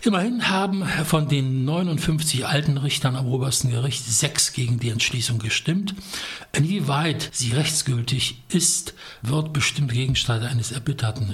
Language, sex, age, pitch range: English, male, 60-79, 120-150 Hz